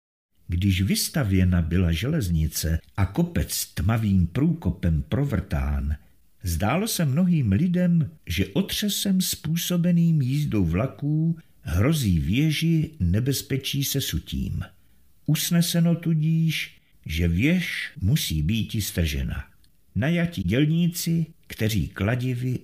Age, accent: 50-69, native